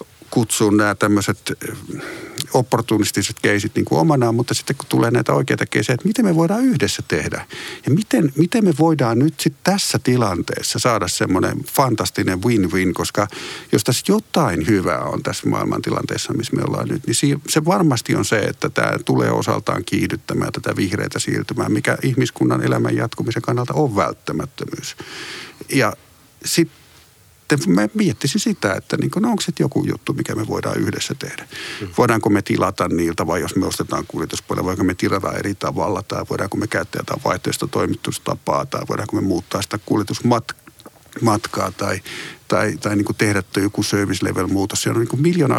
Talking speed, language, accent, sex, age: 160 wpm, Finnish, native, male, 50-69